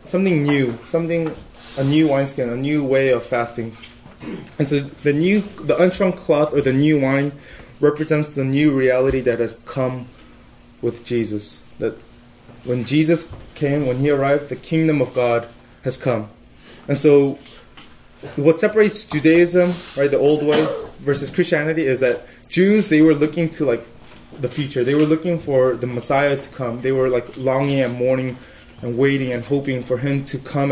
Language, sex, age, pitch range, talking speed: English, male, 20-39, 125-155 Hz, 170 wpm